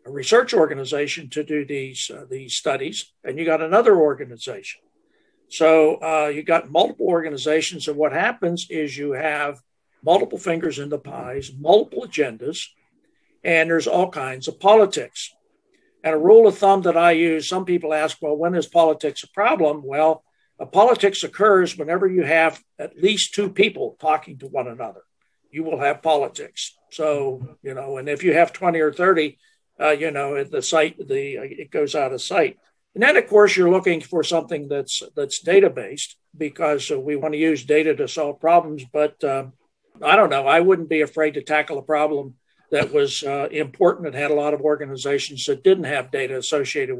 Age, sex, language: 60-79, male, English